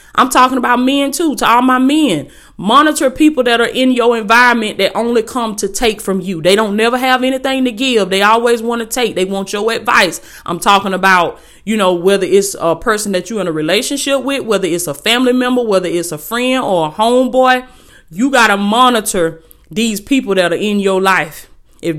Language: English